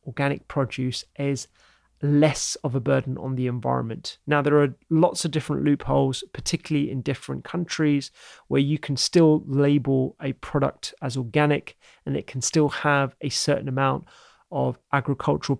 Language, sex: English, male